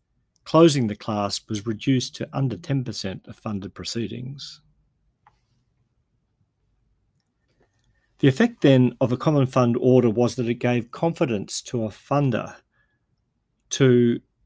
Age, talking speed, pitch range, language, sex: 50-69, 115 wpm, 110-130 Hz, English, male